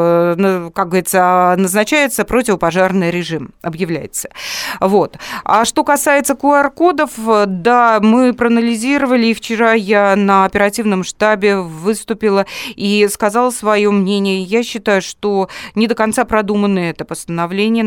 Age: 30-49